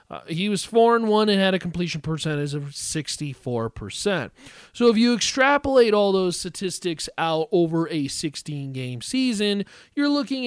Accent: American